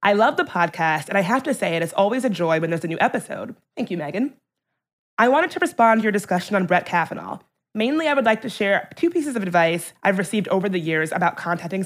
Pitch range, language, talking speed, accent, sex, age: 180-235 Hz, English, 250 wpm, American, female, 20-39